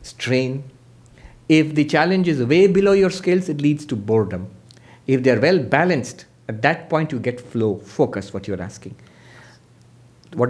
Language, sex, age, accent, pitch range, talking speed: English, male, 50-69, Indian, 120-165 Hz, 170 wpm